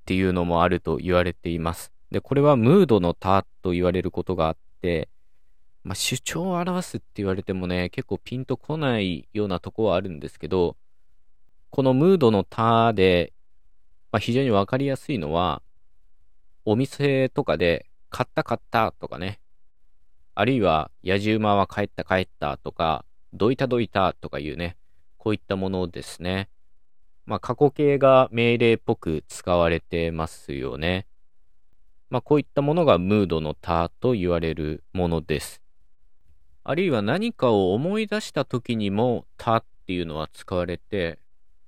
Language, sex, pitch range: Japanese, male, 80-115 Hz